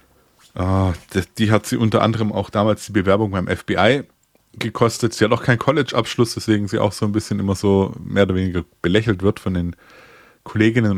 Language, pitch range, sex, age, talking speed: German, 95-115 Hz, male, 20-39, 180 wpm